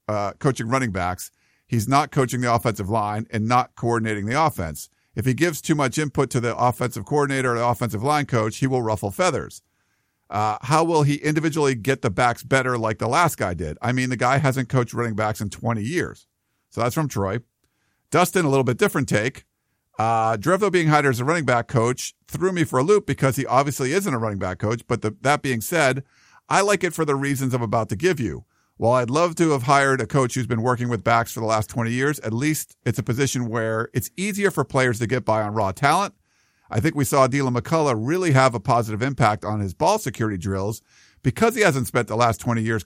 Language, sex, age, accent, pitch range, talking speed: English, male, 50-69, American, 115-140 Hz, 230 wpm